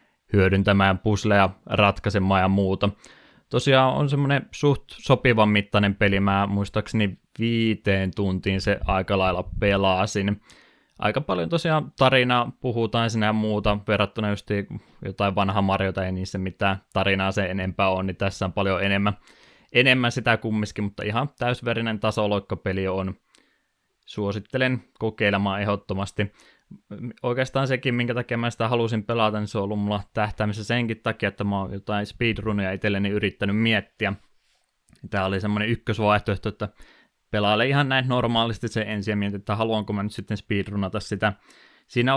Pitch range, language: 100-115 Hz, Finnish